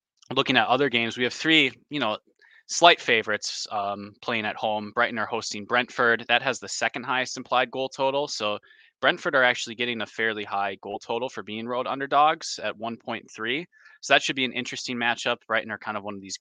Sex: male